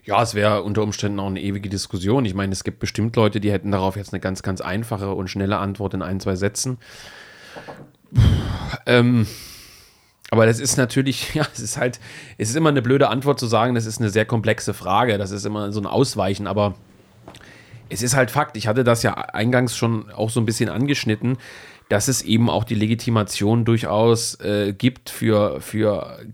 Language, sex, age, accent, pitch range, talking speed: German, male, 30-49, German, 100-115 Hz, 195 wpm